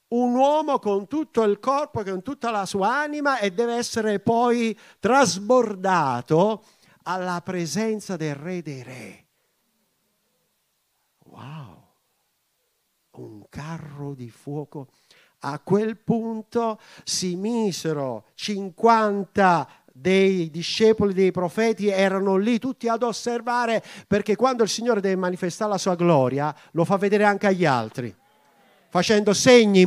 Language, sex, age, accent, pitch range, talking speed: Italian, male, 50-69, native, 150-225 Hz, 120 wpm